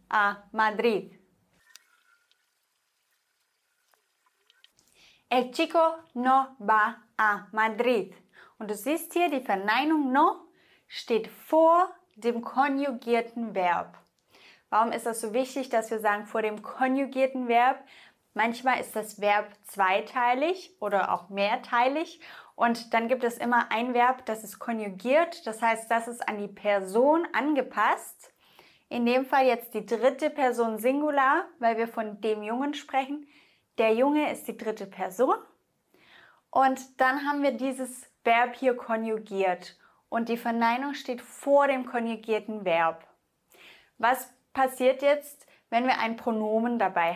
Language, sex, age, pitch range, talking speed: English, female, 20-39, 220-275 Hz, 130 wpm